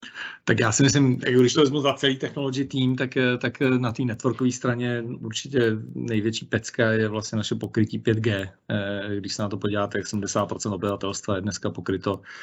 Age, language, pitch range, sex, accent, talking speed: 40-59, Czech, 100-115 Hz, male, native, 170 wpm